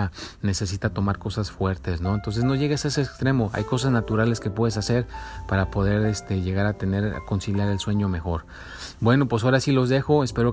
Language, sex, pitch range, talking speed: Spanish, male, 100-120 Hz, 200 wpm